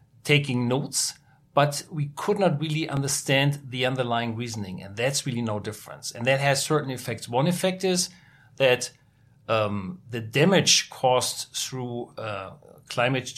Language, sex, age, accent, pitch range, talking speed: English, male, 40-59, German, 125-150 Hz, 145 wpm